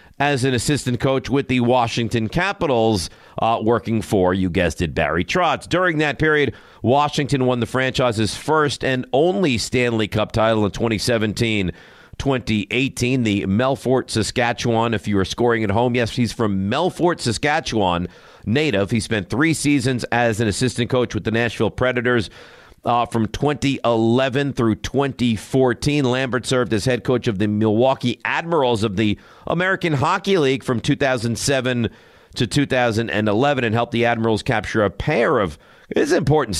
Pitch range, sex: 110-135 Hz, male